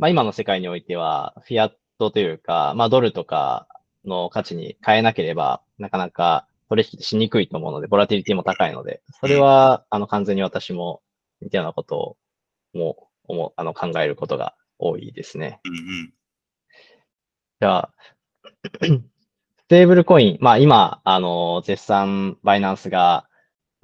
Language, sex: Japanese, male